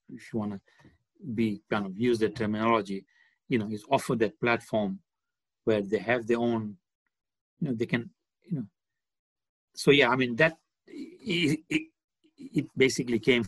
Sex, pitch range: male, 110-135 Hz